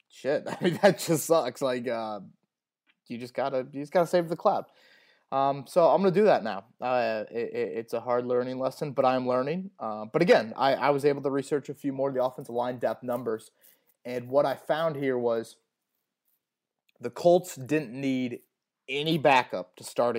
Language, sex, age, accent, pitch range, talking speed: English, male, 20-39, American, 120-165 Hz, 205 wpm